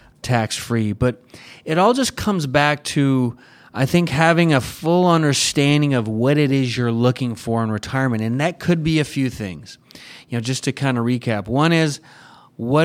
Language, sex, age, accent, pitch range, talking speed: English, male, 30-49, American, 125-155 Hz, 185 wpm